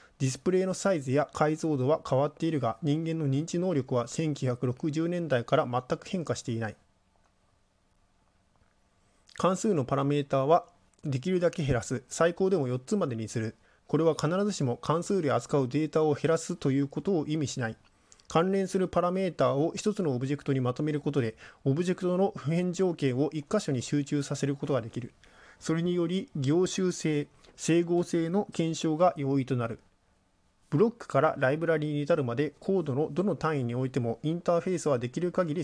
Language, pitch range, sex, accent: Japanese, 135-170 Hz, male, native